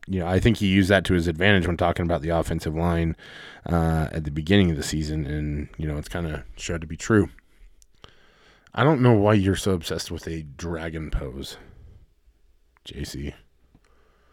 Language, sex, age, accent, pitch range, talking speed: English, male, 20-39, American, 90-110 Hz, 190 wpm